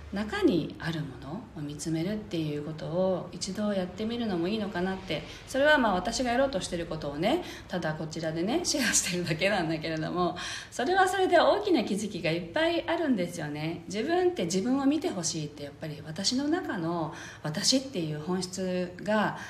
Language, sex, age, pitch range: Japanese, female, 40-59, 160-225 Hz